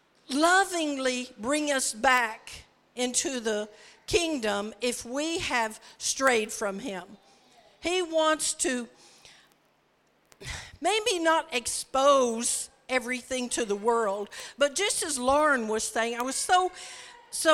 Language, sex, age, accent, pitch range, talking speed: English, female, 50-69, American, 220-280 Hz, 115 wpm